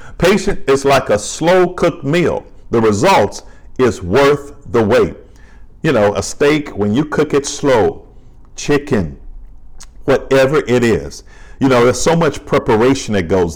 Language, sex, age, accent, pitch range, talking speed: English, male, 50-69, American, 100-140 Hz, 150 wpm